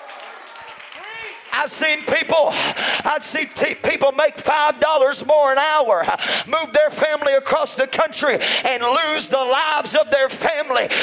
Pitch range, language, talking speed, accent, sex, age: 270-315 Hz, English, 130 wpm, American, male, 40-59